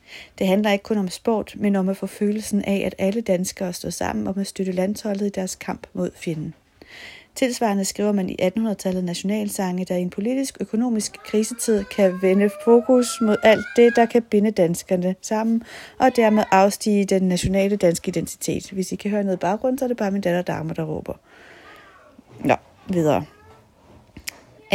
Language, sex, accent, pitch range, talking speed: Danish, female, native, 185-220 Hz, 180 wpm